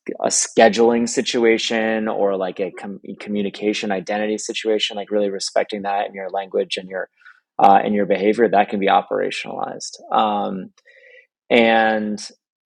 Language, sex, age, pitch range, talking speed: English, male, 20-39, 100-115 Hz, 140 wpm